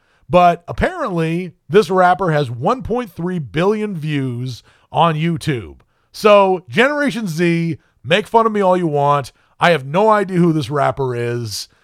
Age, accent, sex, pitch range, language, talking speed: 30-49, American, male, 135-185 Hz, English, 140 wpm